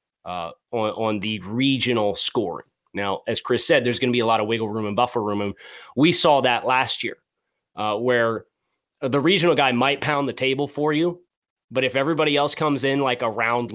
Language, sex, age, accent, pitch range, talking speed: English, male, 30-49, American, 120-150 Hz, 210 wpm